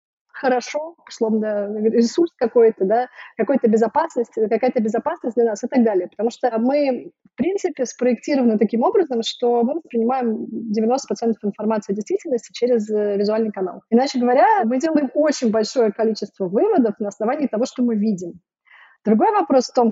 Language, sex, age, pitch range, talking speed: Russian, female, 20-39, 215-270 Hz, 150 wpm